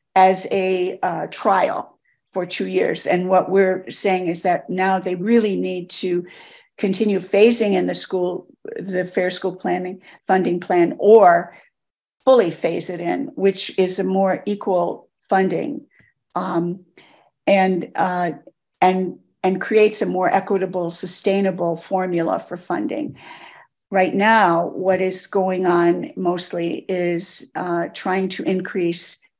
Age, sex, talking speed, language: 50-69, female, 135 wpm, English